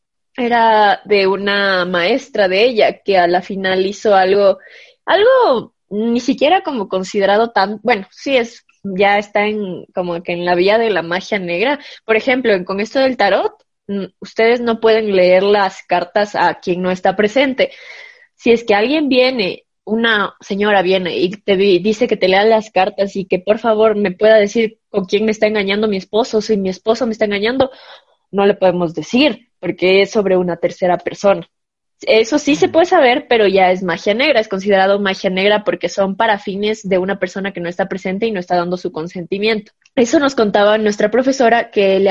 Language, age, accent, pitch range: Spanish, 20-39, Mexican, 195-240 Hz